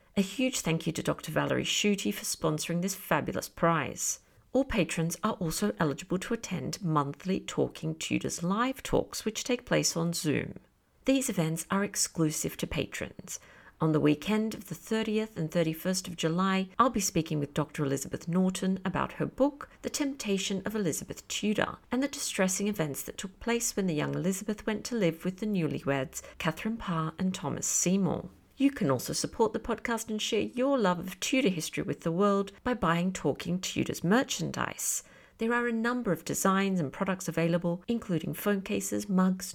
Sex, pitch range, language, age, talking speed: female, 165-215 Hz, English, 50-69, 180 wpm